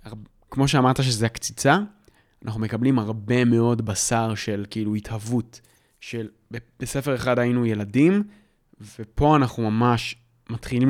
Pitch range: 115-140 Hz